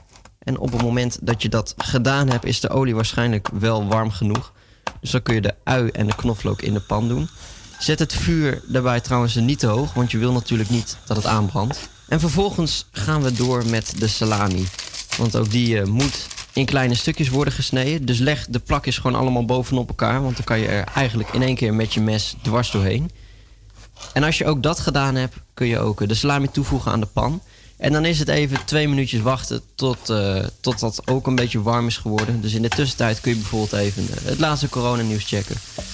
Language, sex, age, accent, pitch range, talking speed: Dutch, male, 20-39, Dutch, 110-140 Hz, 220 wpm